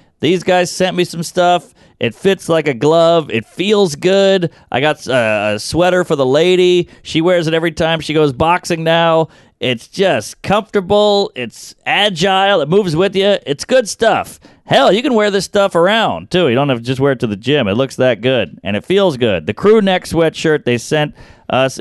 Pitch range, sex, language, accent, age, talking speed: 130-170 Hz, male, English, American, 30-49, 205 wpm